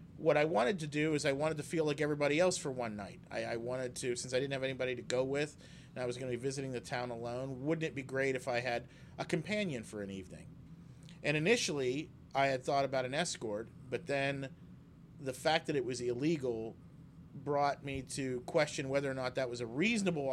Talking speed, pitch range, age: 225 wpm, 130-165 Hz, 40-59